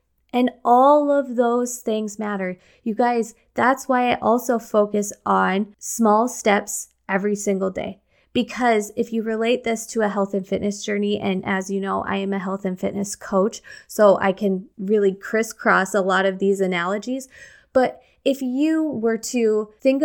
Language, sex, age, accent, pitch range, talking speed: English, female, 20-39, American, 200-245 Hz, 170 wpm